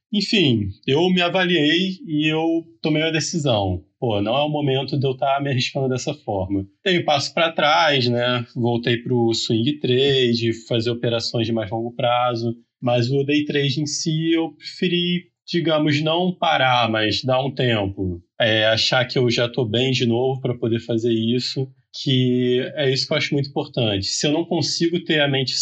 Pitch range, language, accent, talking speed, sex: 115-145 Hz, Portuguese, Brazilian, 190 wpm, male